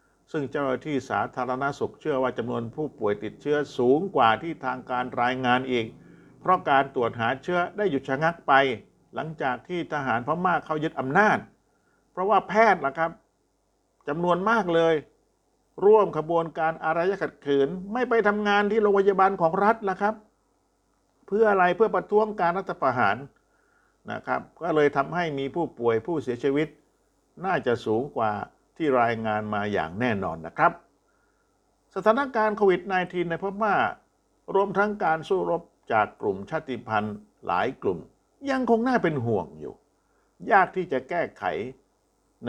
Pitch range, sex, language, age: 120-190 Hz, male, Thai, 60-79